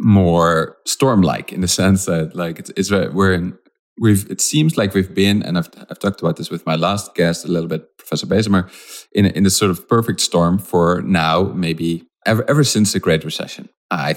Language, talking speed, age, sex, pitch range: English, 210 wpm, 30-49, male, 85-105 Hz